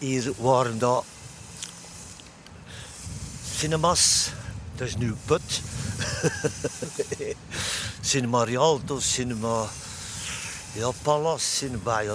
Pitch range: 115-150 Hz